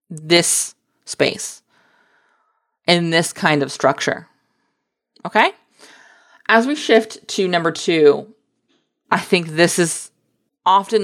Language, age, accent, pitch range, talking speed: English, 20-39, American, 165-225 Hz, 105 wpm